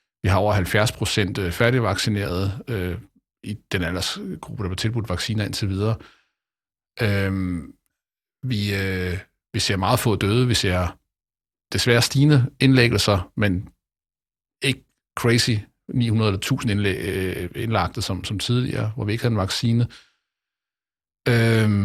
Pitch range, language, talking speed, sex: 95-120 Hz, Danish, 130 wpm, male